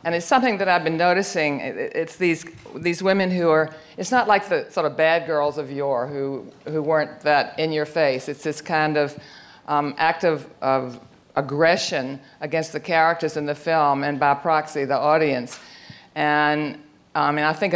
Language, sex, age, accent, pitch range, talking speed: English, female, 50-69, American, 140-165 Hz, 190 wpm